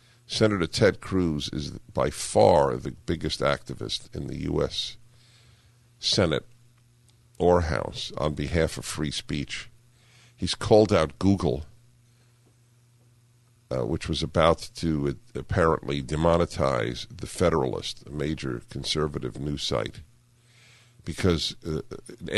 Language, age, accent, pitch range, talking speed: English, 50-69, American, 90-120 Hz, 110 wpm